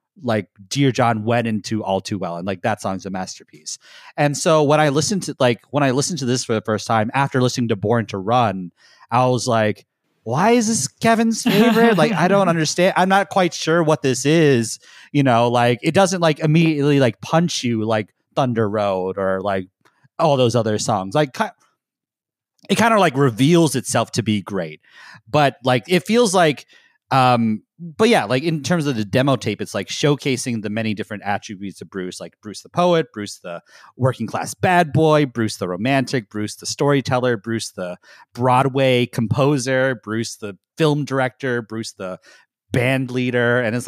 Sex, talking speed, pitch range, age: male, 190 wpm, 110-150 Hz, 30-49